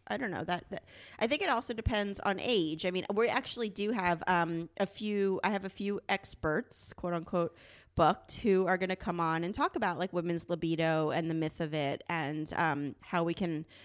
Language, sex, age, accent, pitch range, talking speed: English, female, 30-49, American, 170-230 Hz, 220 wpm